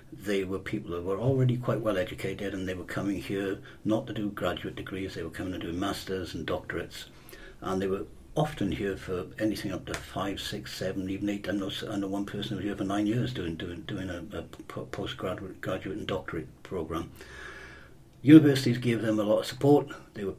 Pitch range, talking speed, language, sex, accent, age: 95-120 Hz, 205 wpm, English, male, British, 60-79